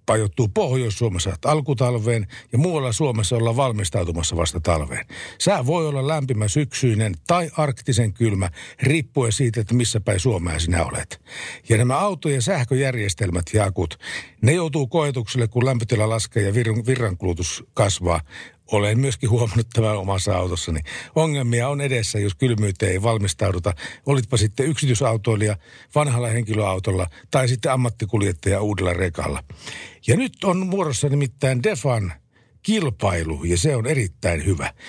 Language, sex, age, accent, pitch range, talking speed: Finnish, male, 60-79, native, 100-135 Hz, 130 wpm